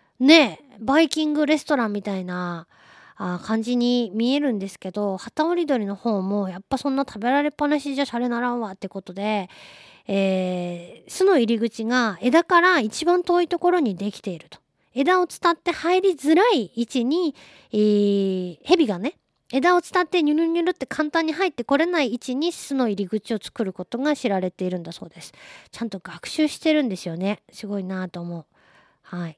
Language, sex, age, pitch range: Japanese, female, 20-39, 190-260 Hz